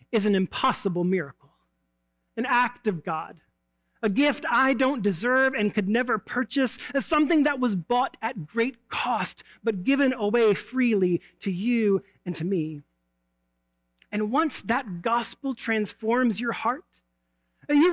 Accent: American